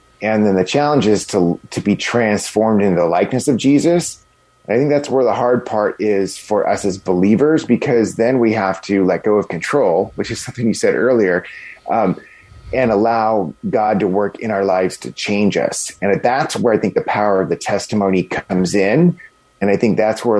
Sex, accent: male, American